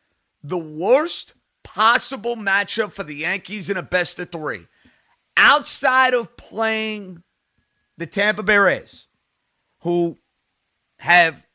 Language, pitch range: English, 150-210 Hz